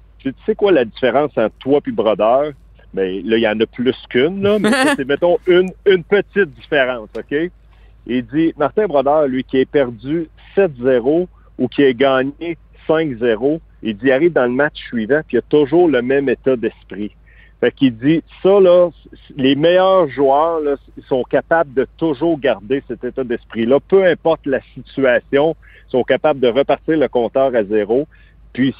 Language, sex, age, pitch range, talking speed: French, male, 50-69, 125-155 Hz, 195 wpm